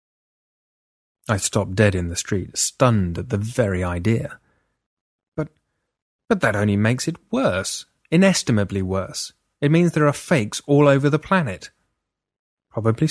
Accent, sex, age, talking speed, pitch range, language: British, male, 30-49, 135 wpm, 115-165 Hz, English